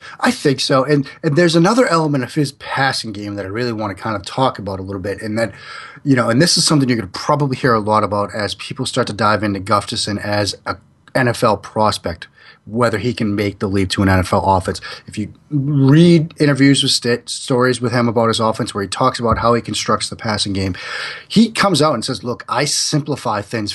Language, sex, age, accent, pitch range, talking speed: English, male, 30-49, American, 110-140 Hz, 230 wpm